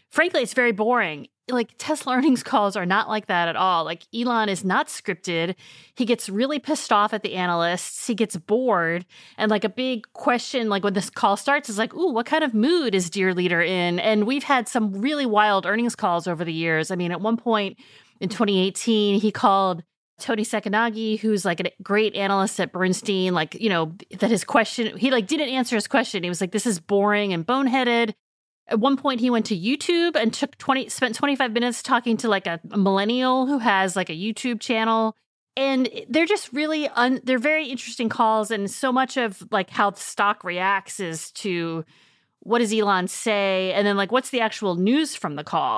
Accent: American